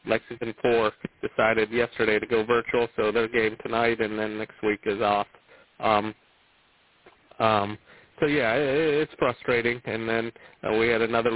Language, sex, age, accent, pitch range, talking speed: English, male, 30-49, American, 105-120 Hz, 160 wpm